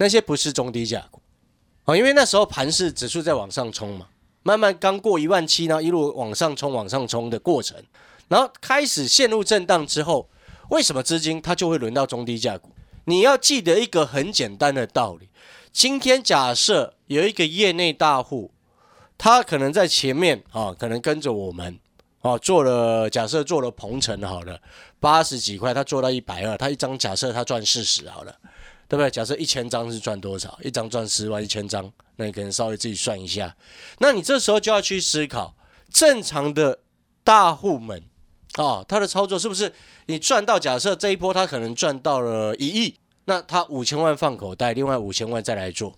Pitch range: 115-165 Hz